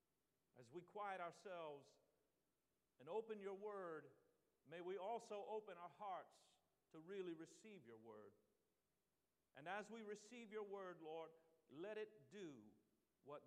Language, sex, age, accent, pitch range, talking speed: English, male, 50-69, American, 150-205 Hz, 135 wpm